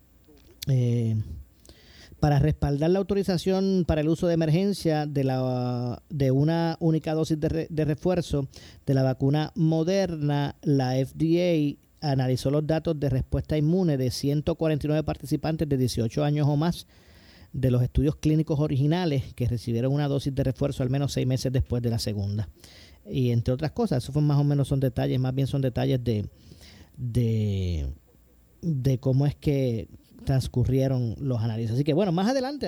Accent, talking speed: American, 160 wpm